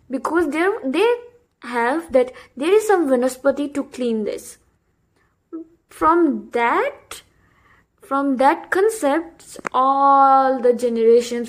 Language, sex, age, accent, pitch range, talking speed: English, female, 20-39, Indian, 260-385 Hz, 100 wpm